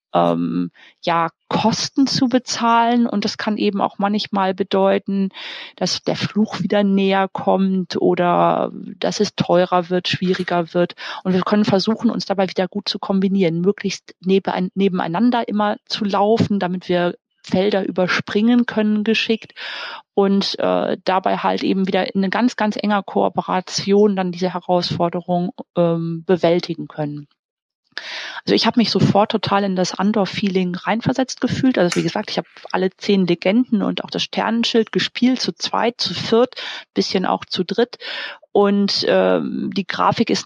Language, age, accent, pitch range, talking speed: German, 30-49, German, 180-220 Hz, 145 wpm